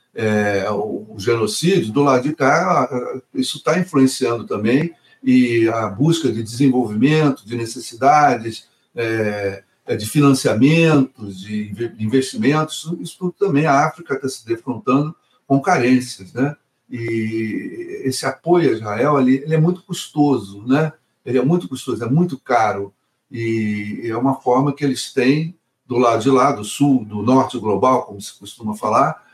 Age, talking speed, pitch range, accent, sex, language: 60-79, 145 wpm, 115-150 Hz, Brazilian, male, Portuguese